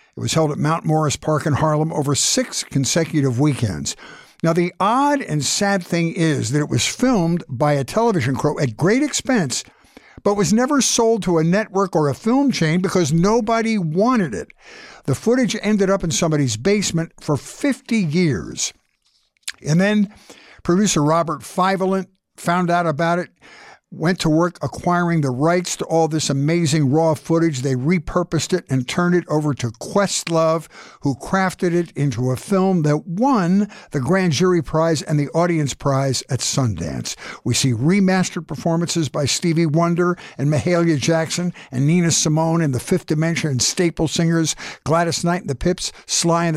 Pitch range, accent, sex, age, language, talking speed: 150-185 Hz, American, male, 60-79, English, 170 wpm